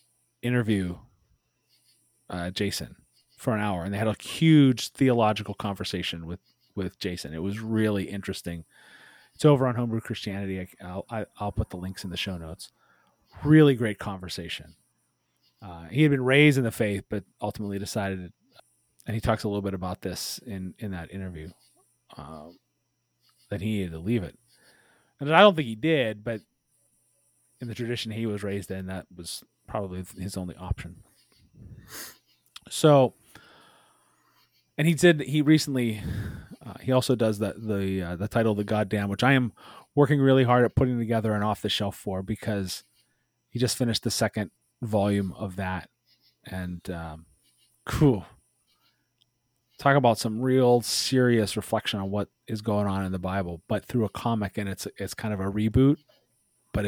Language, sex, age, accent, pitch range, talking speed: English, male, 30-49, American, 95-120 Hz, 165 wpm